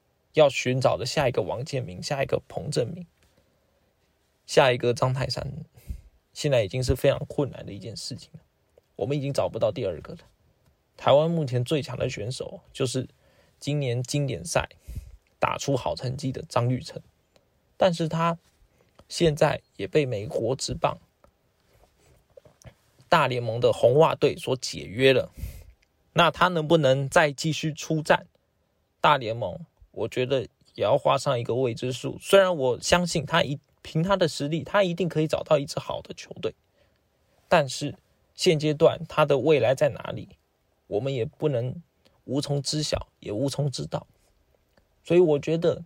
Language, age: Chinese, 20-39